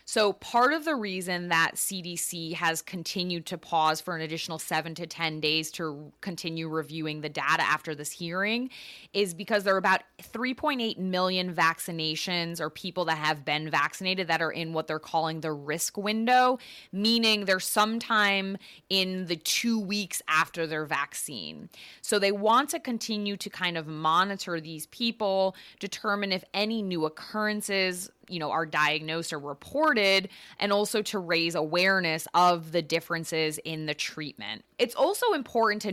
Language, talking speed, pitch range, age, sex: English, 160 wpm, 160-205 Hz, 20-39, female